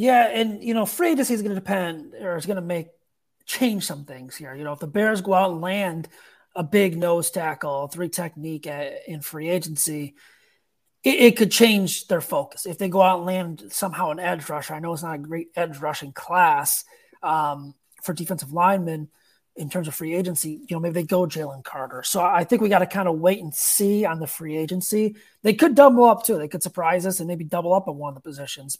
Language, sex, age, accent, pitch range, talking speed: English, male, 30-49, American, 160-195 Hz, 230 wpm